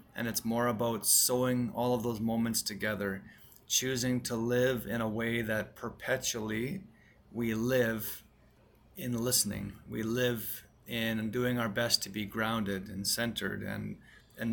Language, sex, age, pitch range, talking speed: English, male, 30-49, 105-120 Hz, 145 wpm